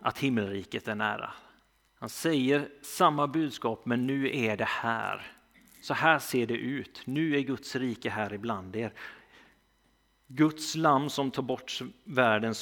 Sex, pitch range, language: male, 115-145 Hz, Swedish